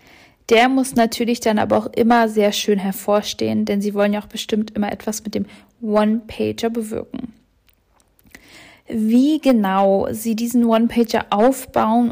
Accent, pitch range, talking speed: German, 220-265 Hz, 140 wpm